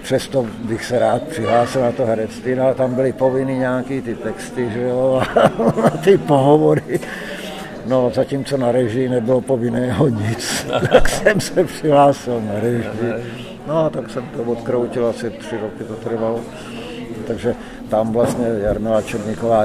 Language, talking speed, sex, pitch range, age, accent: Czech, 145 wpm, male, 110-125 Hz, 60-79, native